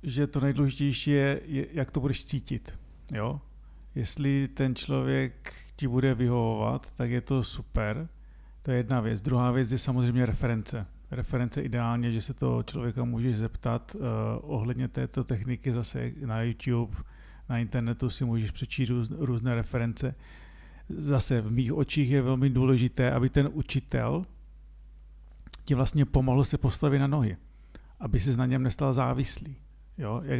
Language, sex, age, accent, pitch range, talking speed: Czech, male, 50-69, native, 115-135 Hz, 150 wpm